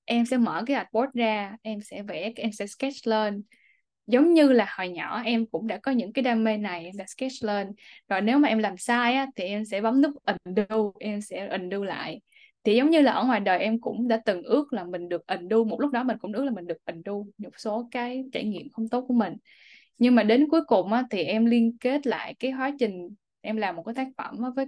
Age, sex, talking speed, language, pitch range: 10-29, female, 245 wpm, Vietnamese, 210-255 Hz